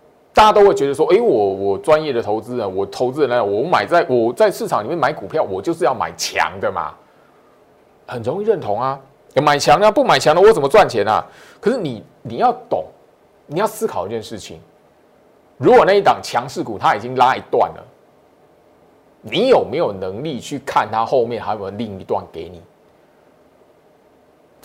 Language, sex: Chinese, male